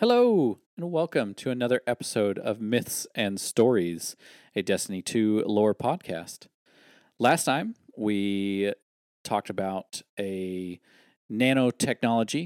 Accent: American